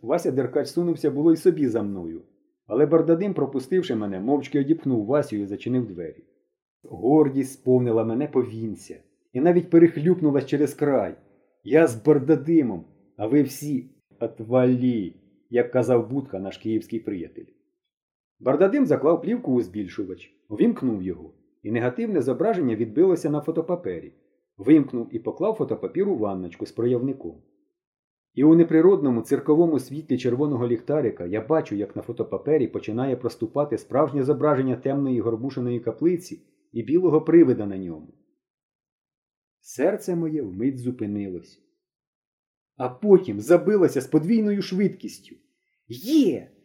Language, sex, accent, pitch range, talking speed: Ukrainian, male, native, 125-200 Hz, 125 wpm